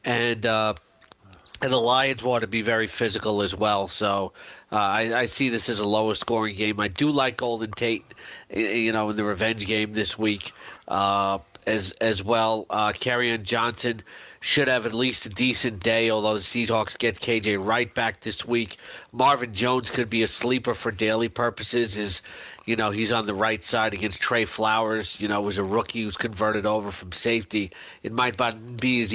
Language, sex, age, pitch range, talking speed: English, male, 40-59, 110-125 Hz, 195 wpm